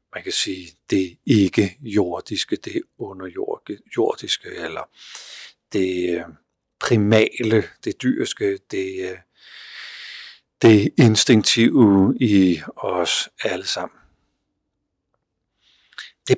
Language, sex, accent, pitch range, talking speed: Danish, male, native, 95-125 Hz, 80 wpm